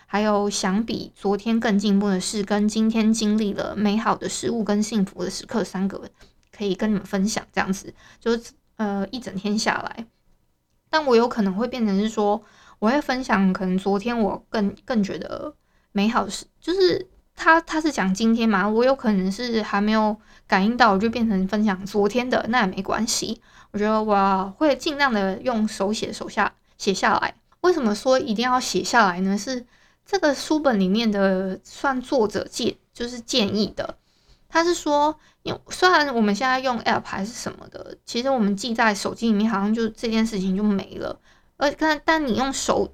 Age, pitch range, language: 20-39, 200-255 Hz, Chinese